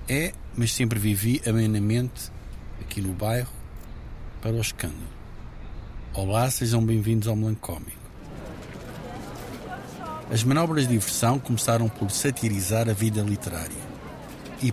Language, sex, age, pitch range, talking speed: Portuguese, male, 50-69, 105-125 Hz, 110 wpm